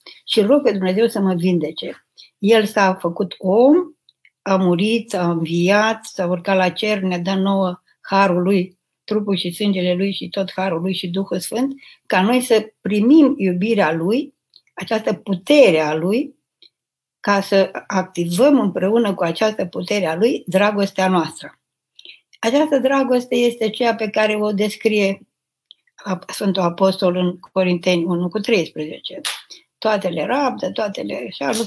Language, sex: Romanian, female